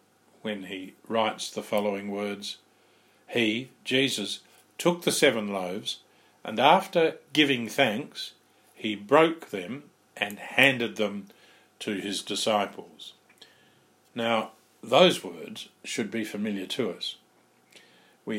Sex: male